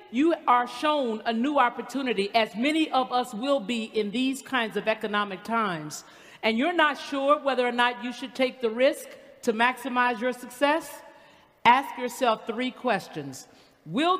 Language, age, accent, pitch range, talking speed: English, 50-69, American, 205-270 Hz, 165 wpm